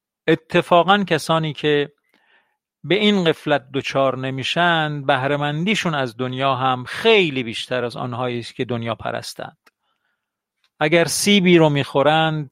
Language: Persian